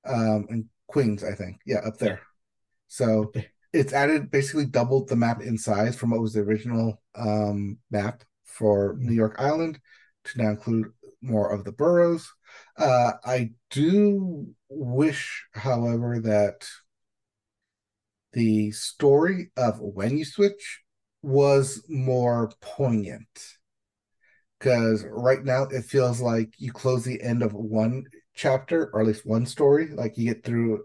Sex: male